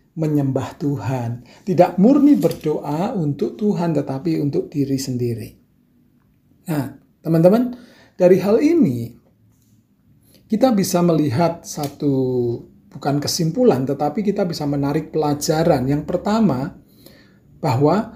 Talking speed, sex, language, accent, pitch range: 100 wpm, male, Indonesian, native, 140-205 Hz